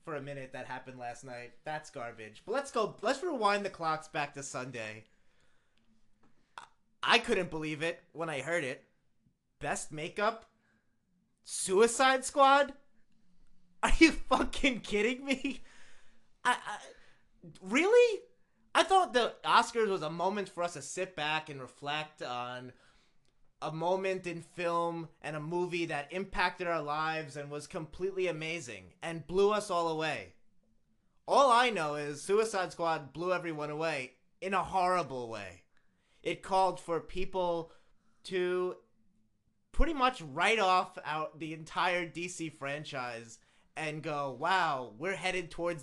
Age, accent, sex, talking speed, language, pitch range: 30-49, American, male, 140 wpm, English, 145-190 Hz